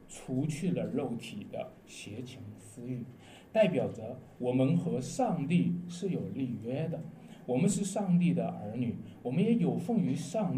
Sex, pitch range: male, 120-175 Hz